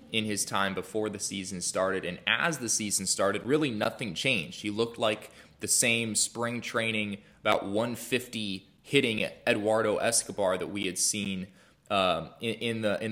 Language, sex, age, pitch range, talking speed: English, male, 20-39, 100-115 Hz, 150 wpm